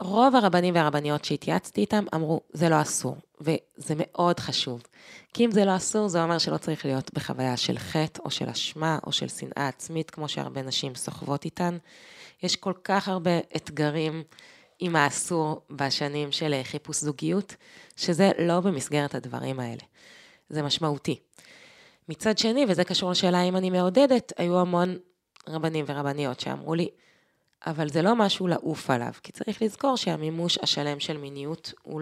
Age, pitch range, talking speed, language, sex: 20-39, 150-180 Hz, 155 wpm, Hebrew, female